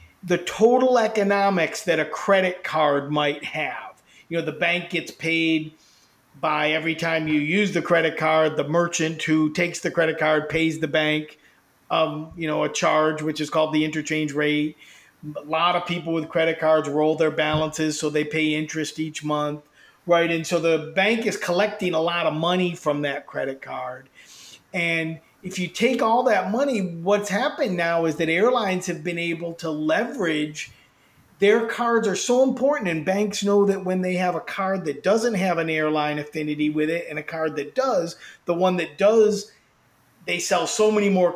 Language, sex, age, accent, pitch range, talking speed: English, male, 50-69, American, 155-195 Hz, 185 wpm